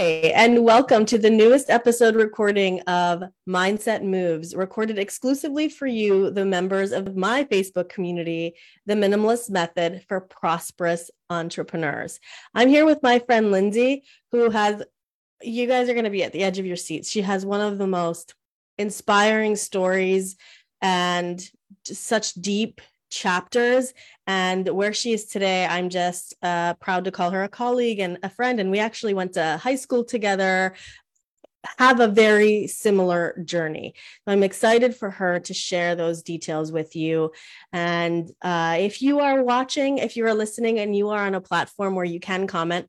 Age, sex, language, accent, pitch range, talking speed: 30-49, female, English, American, 180-230 Hz, 170 wpm